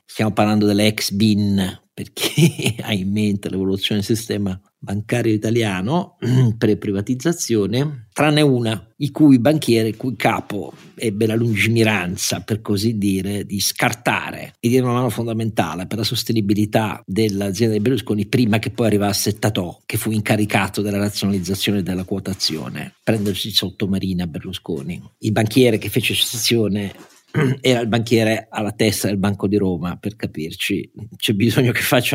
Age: 50-69